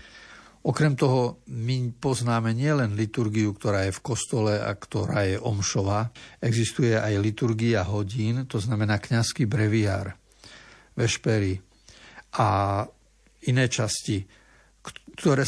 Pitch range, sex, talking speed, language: 105-125 Hz, male, 105 wpm, Slovak